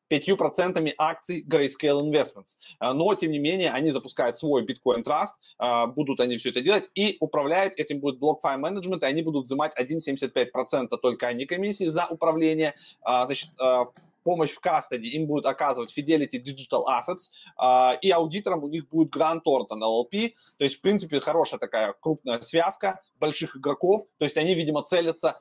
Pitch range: 135-175 Hz